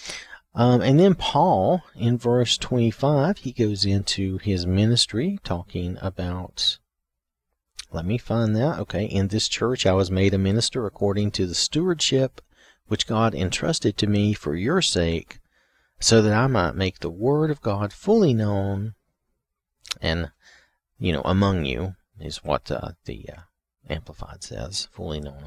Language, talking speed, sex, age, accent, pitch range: English, 150 wpm, male, 40-59, American, 85-115 Hz